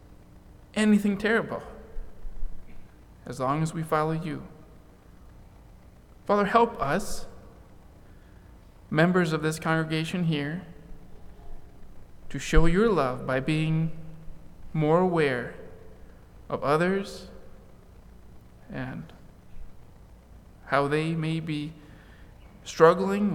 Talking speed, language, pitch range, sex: 80 wpm, English, 115-165 Hz, male